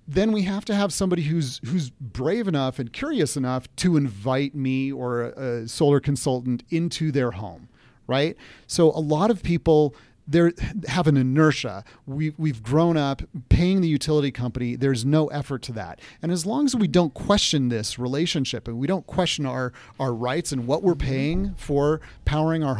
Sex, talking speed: male, 180 wpm